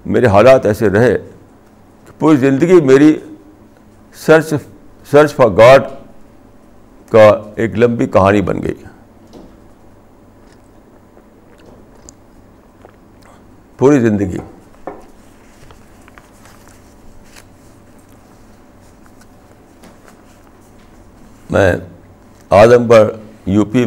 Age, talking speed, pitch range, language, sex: 60-79, 65 wpm, 100-125 Hz, Urdu, male